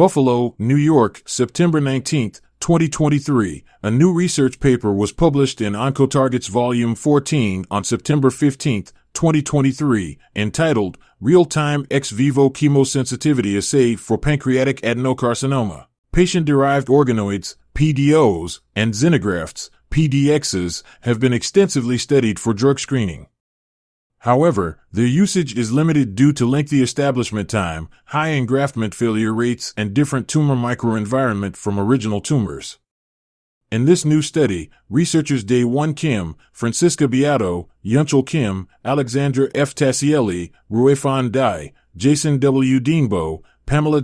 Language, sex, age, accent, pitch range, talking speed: English, male, 30-49, American, 115-145 Hz, 115 wpm